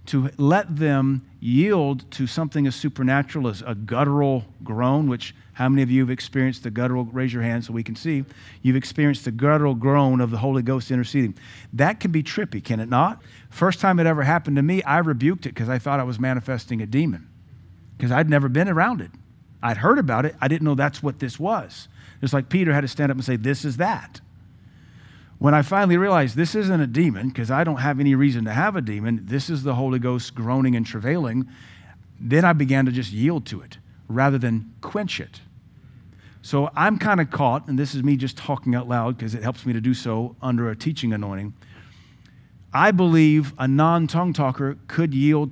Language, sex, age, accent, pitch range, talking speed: English, male, 40-59, American, 120-145 Hz, 210 wpm